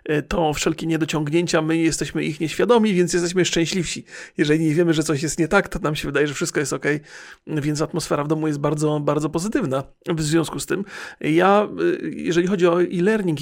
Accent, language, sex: native, Polish, male